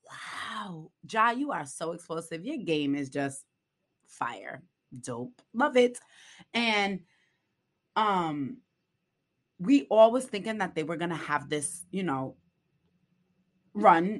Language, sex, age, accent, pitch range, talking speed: English, female, 20-39, American, 140-190 Hz, 125 wpm